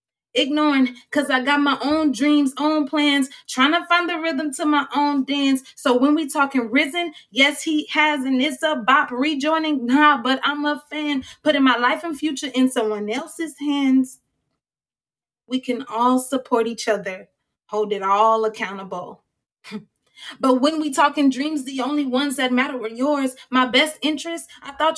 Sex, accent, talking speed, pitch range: female, American, 175 wpm, 245-295 Hz